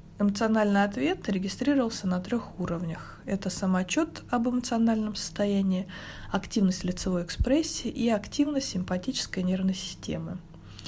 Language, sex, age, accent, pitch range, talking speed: Russian, female, 20-39, native, 185-240 Hz, 105 wpm